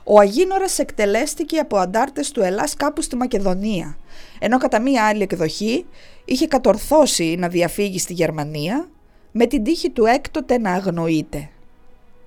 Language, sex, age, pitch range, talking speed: English, female, 20-39, 195-310 Hz, 135 wpm